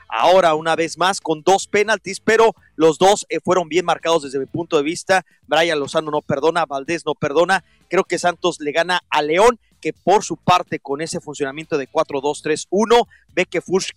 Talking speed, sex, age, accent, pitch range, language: 190 wpm, male, 40-59, Mexican, 155-190 Hz, English